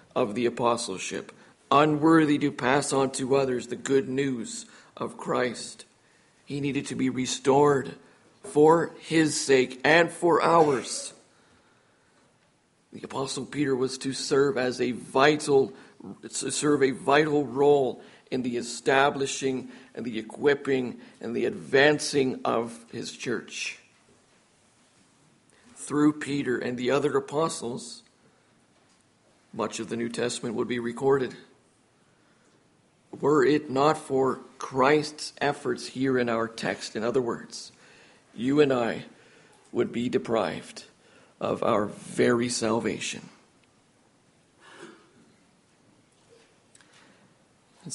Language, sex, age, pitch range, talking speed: English, male, 50-69, 120-145 Hz, 110 wpm